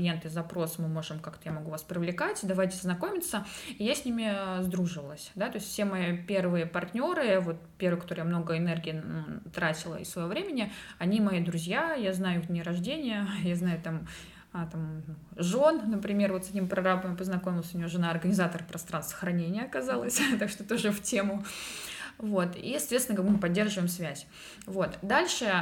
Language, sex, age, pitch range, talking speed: Russian, female, 20-39, 170-205 Hz, 165 wpm